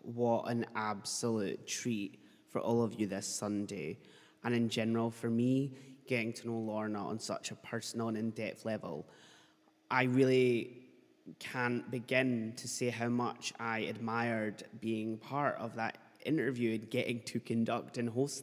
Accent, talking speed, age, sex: British, 155 wpm, 20-39, male